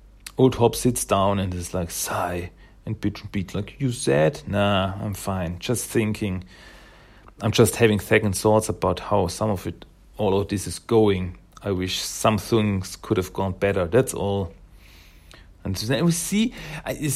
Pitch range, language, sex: 95-135 Hz, German, male